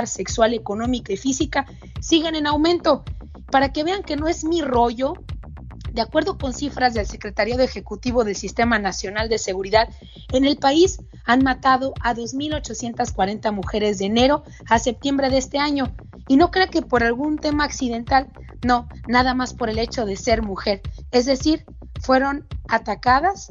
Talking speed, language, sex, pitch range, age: 160 wpm, Spanish, female, 225-280 Hz, 30-49